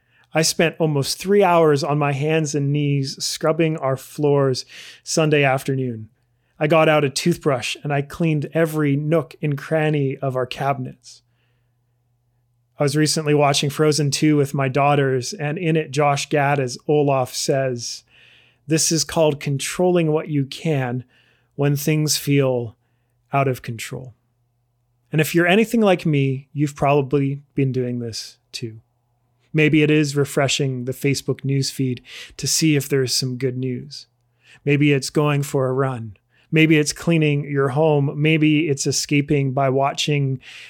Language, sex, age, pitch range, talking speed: English, male, 30-49, 130-155 Hz, 150 wpm